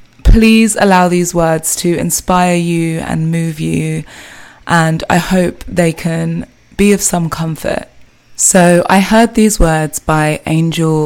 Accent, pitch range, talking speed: British, 155-175 Hz, 140 wpm